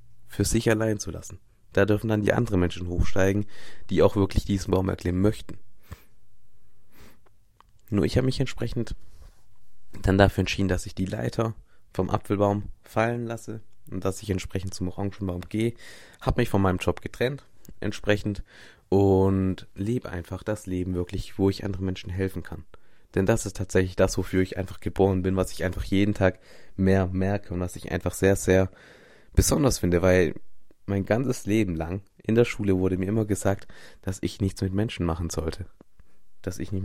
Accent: German